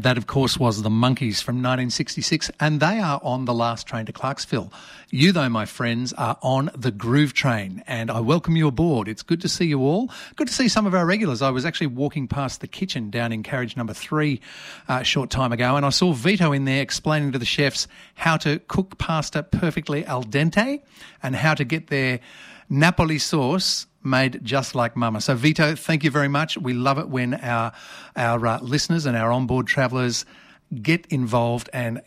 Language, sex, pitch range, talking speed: English, male, 120-160 Hz, 205 wpm